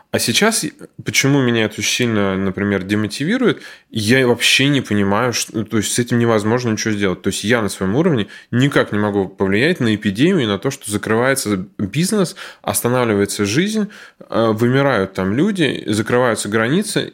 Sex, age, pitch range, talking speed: male, 20-39, 100-125 Hz, 155 wpm